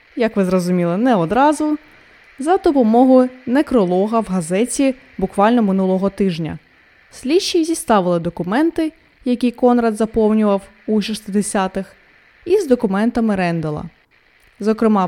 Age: 20-39